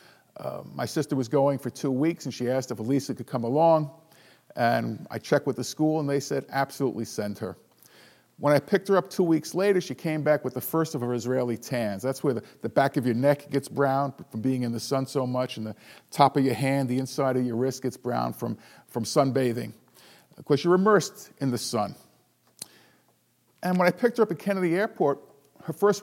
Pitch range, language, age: 125-155 Hz, English, 50-69